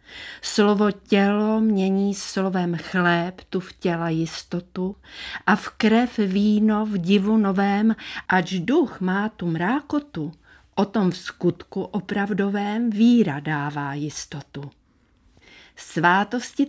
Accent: native